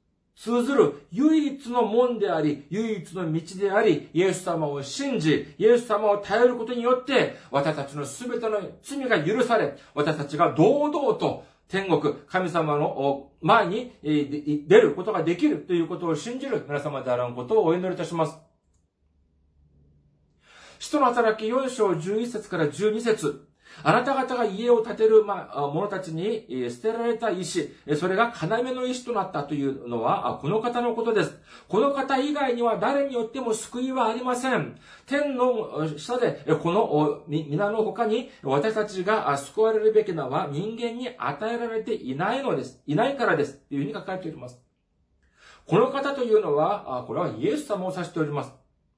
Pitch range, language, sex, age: 150-235 Hz, Japanese, male, 40-59